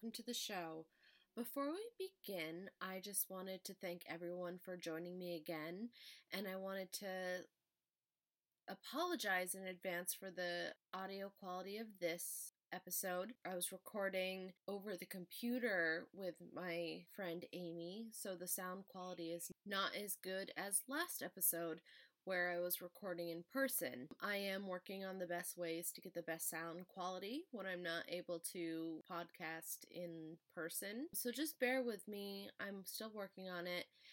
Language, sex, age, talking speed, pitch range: English, female, 20-39, 155 wpm, 175-205 Hz